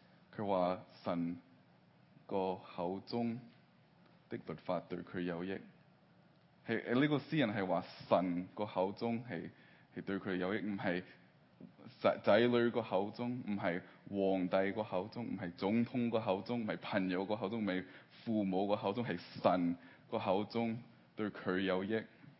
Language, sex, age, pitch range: Chinese, male, 20-39, 95-115 Hz